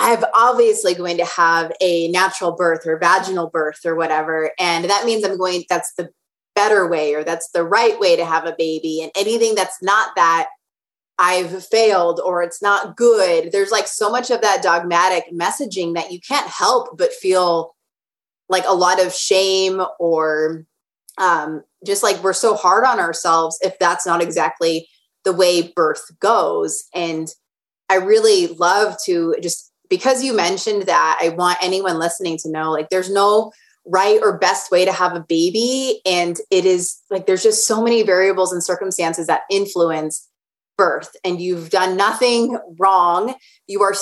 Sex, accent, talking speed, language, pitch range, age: female, American, 170 wpm, English, 170-210 Hz, 20-39